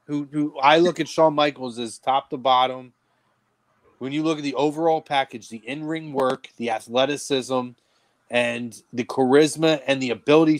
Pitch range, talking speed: 130-175 Hz, 165 wpm